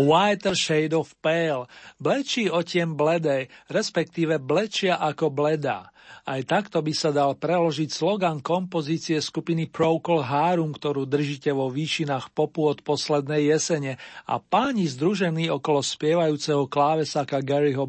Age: 50-69